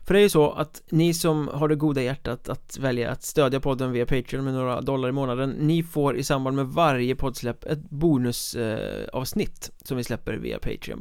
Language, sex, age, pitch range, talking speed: Swedish, male, 30-49, 125-155 Hz, 215 wpm